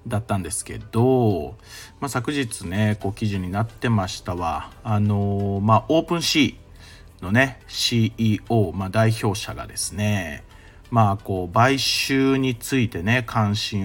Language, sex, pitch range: Japanese, male, 95-115 Hz